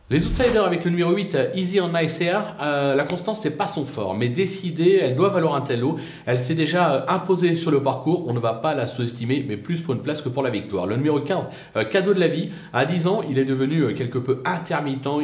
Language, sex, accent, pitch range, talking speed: French, male, French, 130-170 Hz, 250 wpm